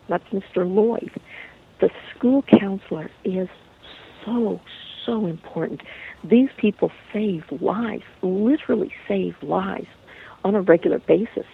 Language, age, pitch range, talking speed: English, 60-79, 180-215 Hz, 110 wpm